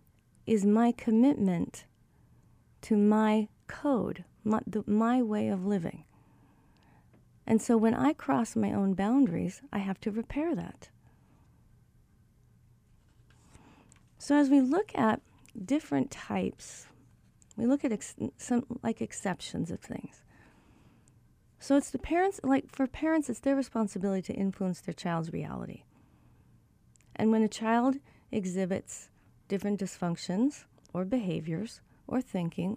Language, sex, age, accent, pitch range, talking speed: English, female, 40-59, American, 190-255 Hz, 120 wpm